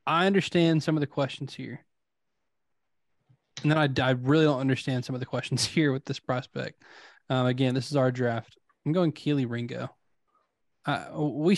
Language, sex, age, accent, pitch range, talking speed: English, male, 20-39, American, 130-150 Hz, 175 wpm